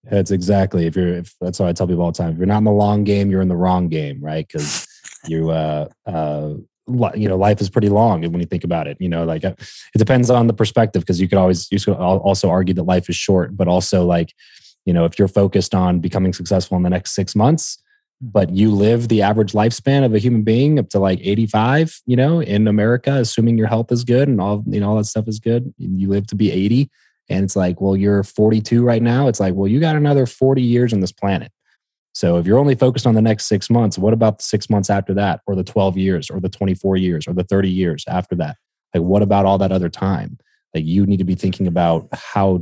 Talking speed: 250 wpm